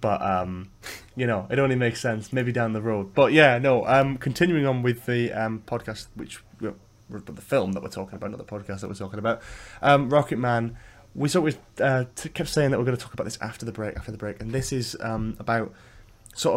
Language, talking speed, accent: English, 245 wpm, British